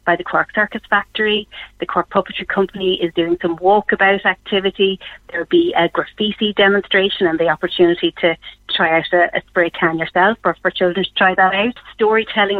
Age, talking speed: 30-49, 180 wpm